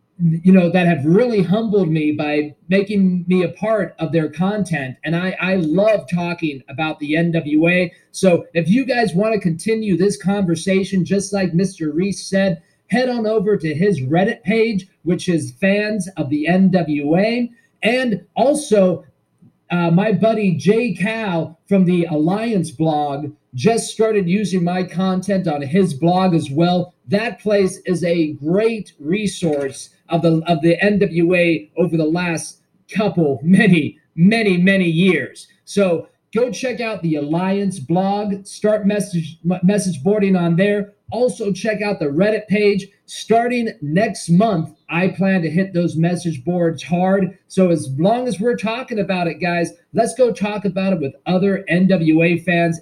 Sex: male